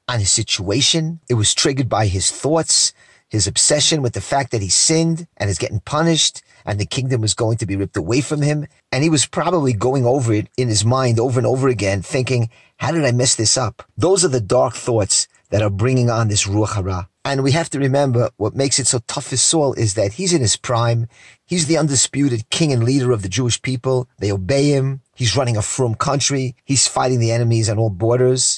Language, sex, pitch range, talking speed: English, male, 115-145 Hz, 225 wpm